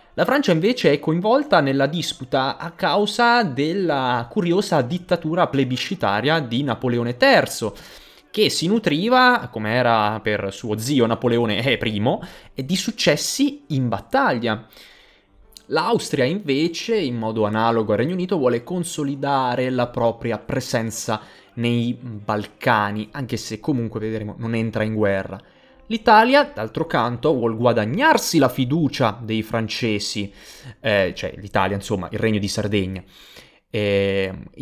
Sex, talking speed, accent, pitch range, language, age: male, 125 wpm, native, 110-160 Hz, Italian, 20-39